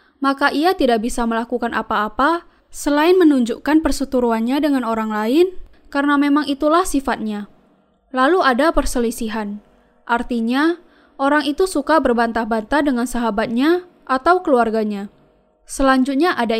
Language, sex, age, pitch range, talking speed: Indonesian, female, 10-29, 230-305 Hz, 110 wpm